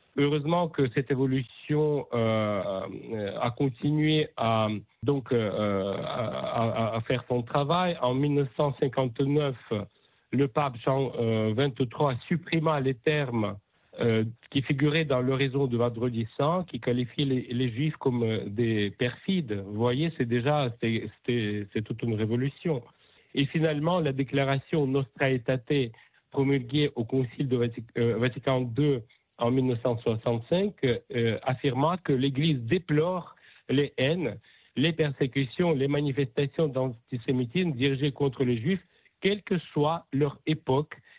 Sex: male